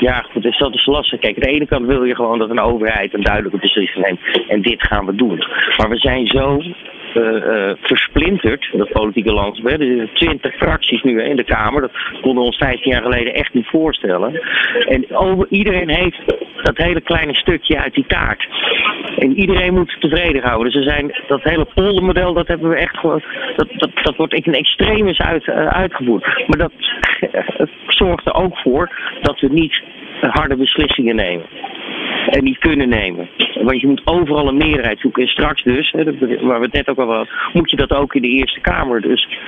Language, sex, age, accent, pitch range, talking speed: Dutch, male, 40-59, Dutch, 120-155 Hz, 200 wpm